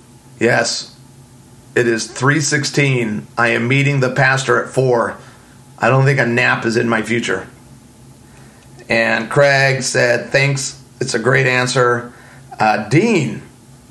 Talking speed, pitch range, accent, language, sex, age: 135 wpm, 120-140 Hz, American, English, male, 30-49